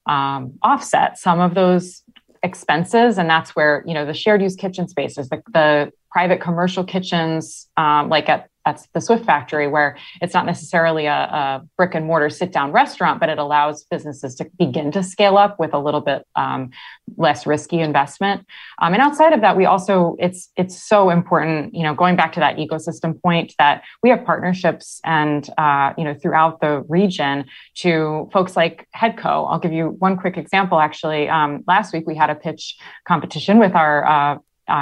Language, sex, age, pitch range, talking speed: English, female, 20-39, 155-195 Hz, 190 wpm